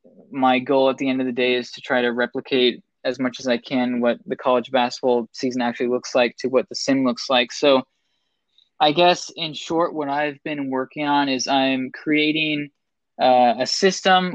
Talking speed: 200 wpm